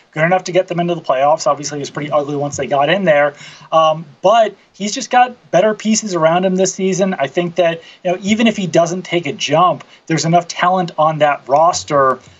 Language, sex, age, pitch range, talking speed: English, male, 30-49, 150-180 Hz, 225 wpm